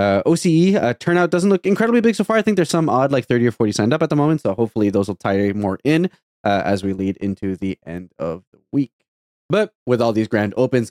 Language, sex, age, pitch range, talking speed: English, male, 20-39, 110-165 Hz, 260 wpm